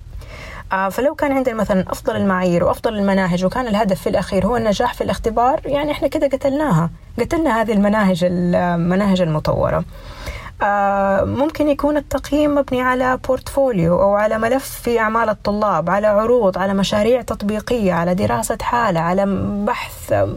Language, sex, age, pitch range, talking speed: Arabic, female, 20-39, 185-260 Hz, 140 wpm